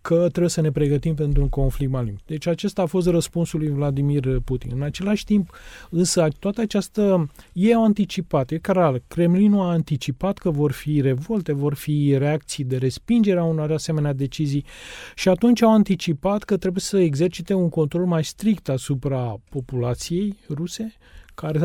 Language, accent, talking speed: Romanian, native, 165 wpm